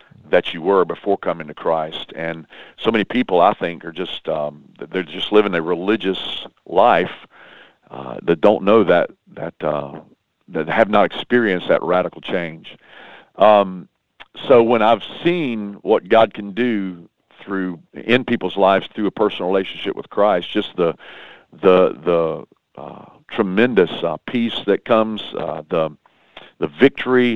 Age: 50-69